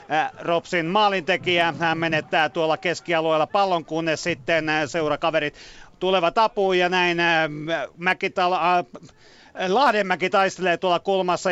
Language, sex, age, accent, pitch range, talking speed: Finnish, male, 40-59, native, 160-190 Hz, 100 wpm